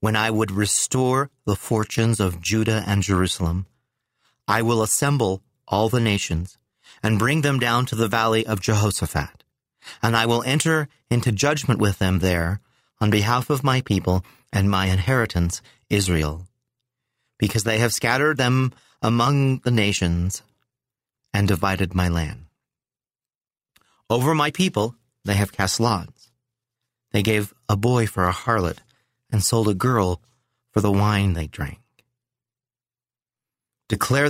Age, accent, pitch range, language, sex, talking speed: 40-59, American, 100-125 Hz, English, male, 140 wpm